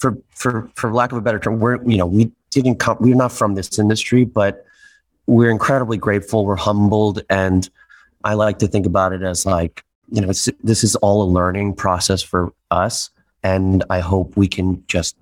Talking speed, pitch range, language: 200 wpm, 90-105 Hz, English